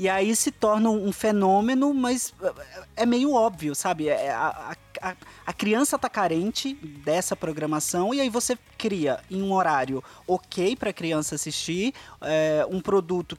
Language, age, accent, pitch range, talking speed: Portuguese, 20-39, Brazilian, 150-210 Hz, 150 wpm